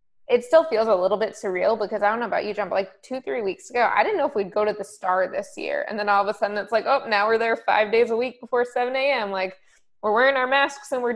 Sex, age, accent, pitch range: female, 20-39, American, 195-245 Hz